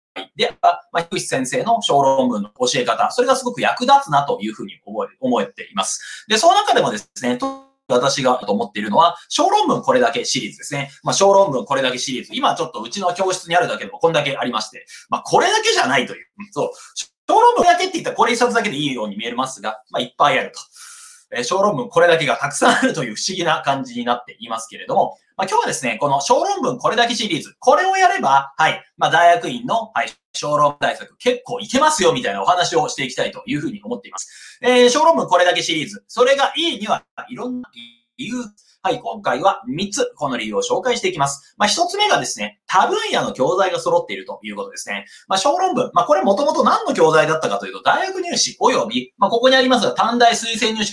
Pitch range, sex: 175-280 Hz, male